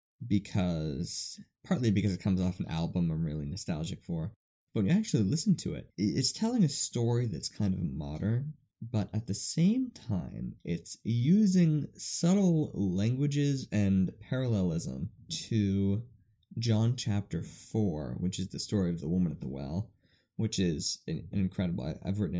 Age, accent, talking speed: 20-39, American, 155 wpm